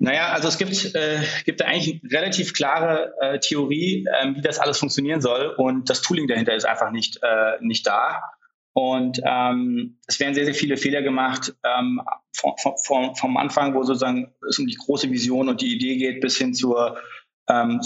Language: German